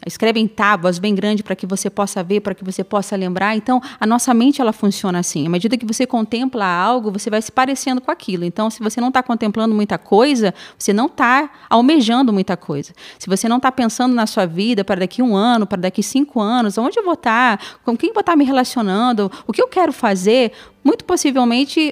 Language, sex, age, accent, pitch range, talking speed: Portuguese, female, 30-49, Brazilian, 200-255 Hz, 220 wpm